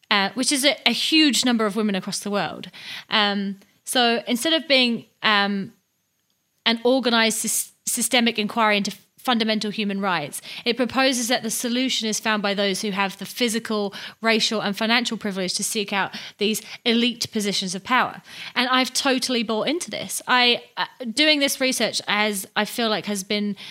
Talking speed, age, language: 175 wpm, 30-49, English